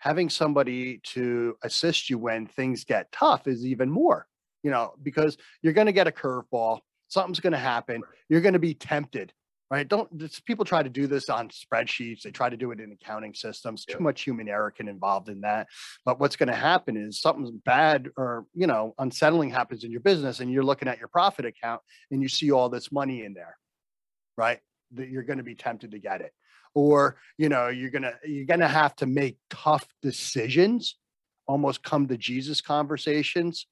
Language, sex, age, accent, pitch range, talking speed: English, male, 40-59, American, 120-150 Hz, 205 wpm